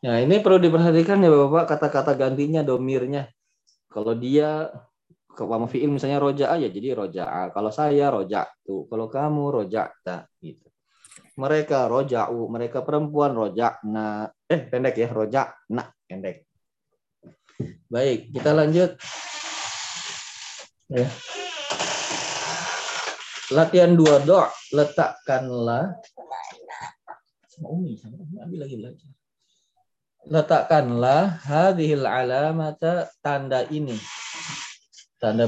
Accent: native